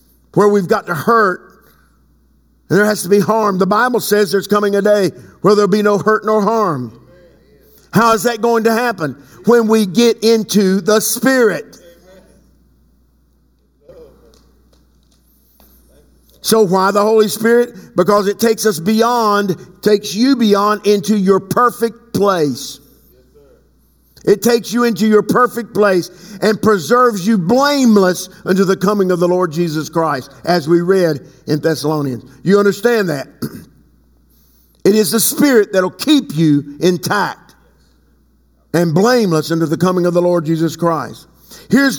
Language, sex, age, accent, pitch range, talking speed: English, male, 50-69, American, 150-220 Hz, 145 wpm